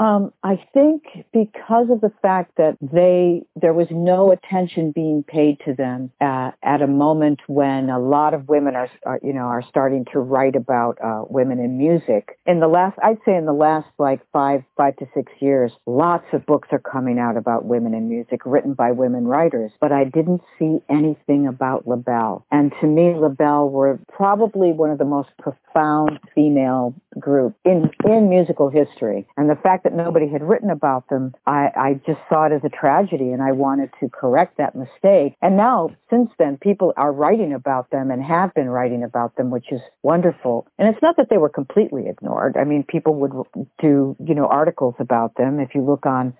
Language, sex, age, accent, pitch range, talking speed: English, female, 50-69, American, 130-175 Hz, 200 wpm